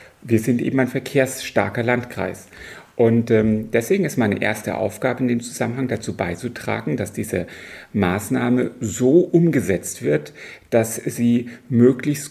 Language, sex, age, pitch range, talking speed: German, male, 40-59, 105-125 Hz, 130 wpm